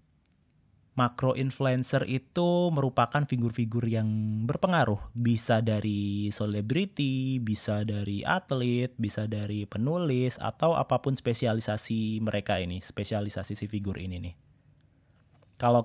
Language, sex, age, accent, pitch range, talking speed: Indonesian, male, 20-39, native, 110-135 Hz, 100 wpm